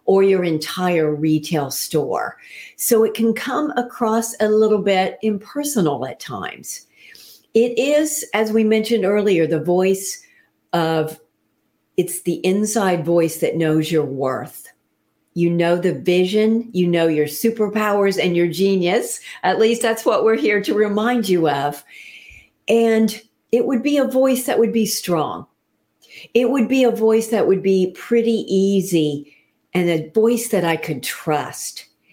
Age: 50-69